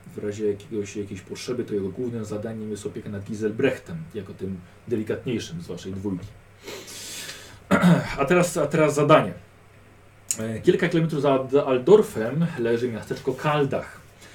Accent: native